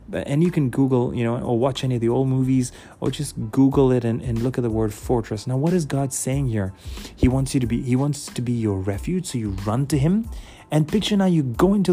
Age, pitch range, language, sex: 30-49, 120-150 Hz, English, male